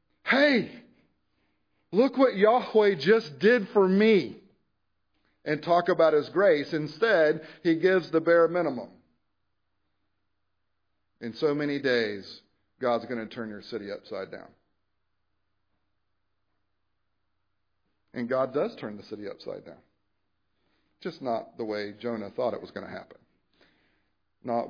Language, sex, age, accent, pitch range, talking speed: English, male, 40-59, American, 100-125 Hz, 125 wpm